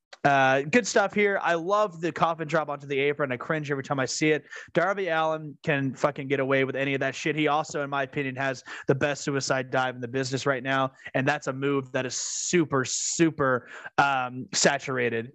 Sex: male